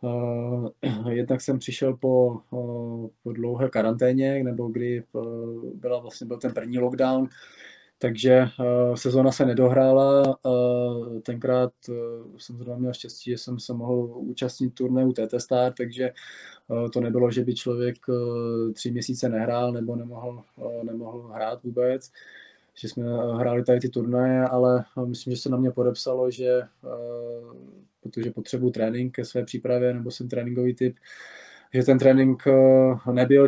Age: 20-39